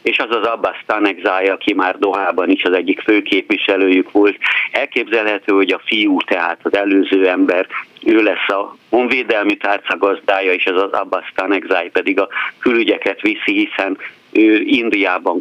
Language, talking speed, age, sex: Hungarian, 155 wpm, 60-79, male